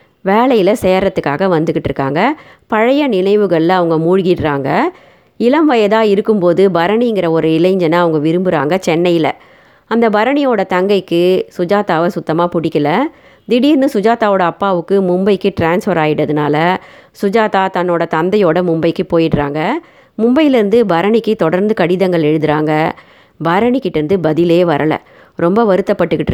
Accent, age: native, 30-49